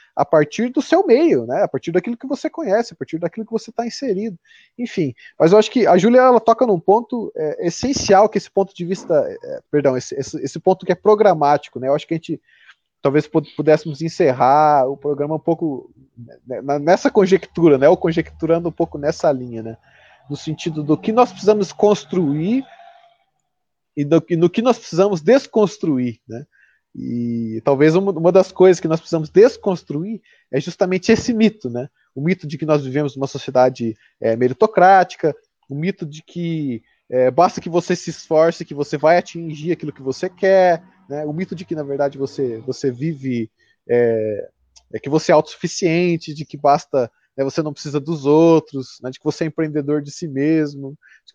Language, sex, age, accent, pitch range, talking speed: Portuguese, male, 20-39, Brazilian, 145-200 Hz, 190 wpm